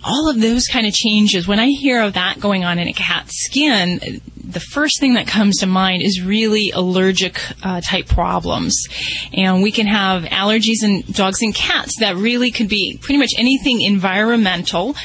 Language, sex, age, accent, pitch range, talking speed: English, female, 30-49, American, 190-225 Hz, 190 wpm